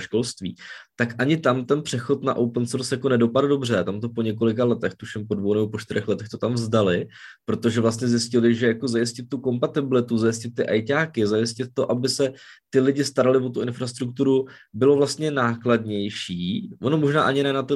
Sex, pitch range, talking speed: male, 115-140 Hz, 195 wpm